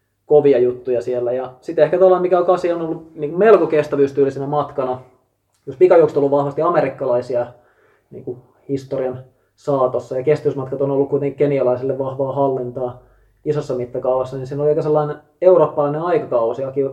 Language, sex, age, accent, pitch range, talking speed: Finnish, male, 20-39, native, 130-150 Hz, 140 wpm